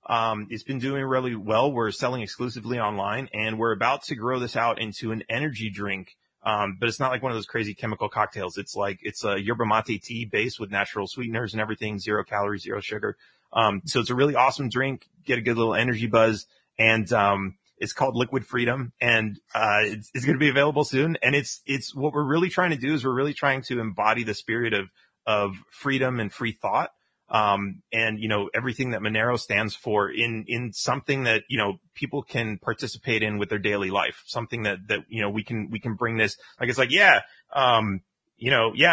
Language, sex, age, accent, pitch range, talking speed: English, male, 30-49, American, 105-130 Hz, 215 wpm